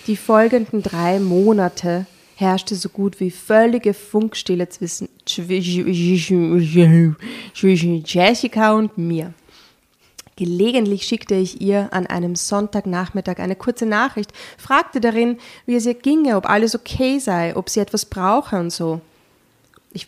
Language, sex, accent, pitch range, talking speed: German, female, German, 180-220 Hz, 125 wpm